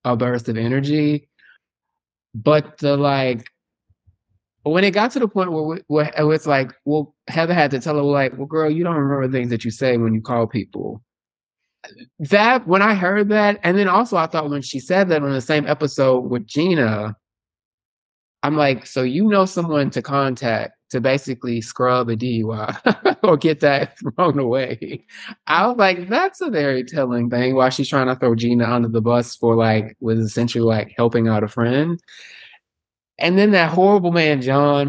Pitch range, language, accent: 115-150 Hz, English, American